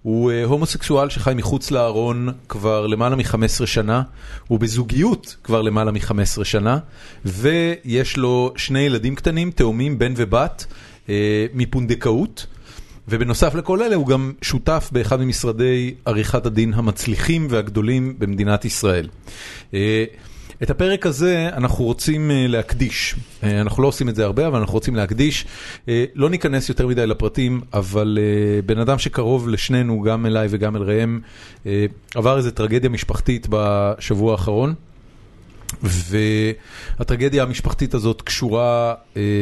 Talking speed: 120 wpm